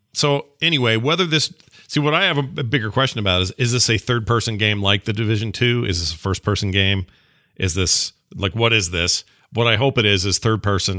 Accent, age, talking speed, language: American, 40-59, 220 wpm, English